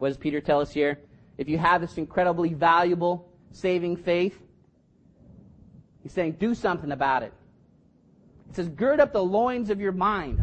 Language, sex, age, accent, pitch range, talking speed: English, male, 30-49, American, 155-220 Hz, 165 wpm